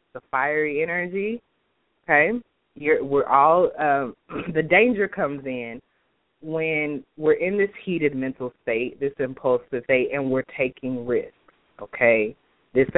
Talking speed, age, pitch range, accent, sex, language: 130 wpm, 20-39, 130-170 Hz, American, female, English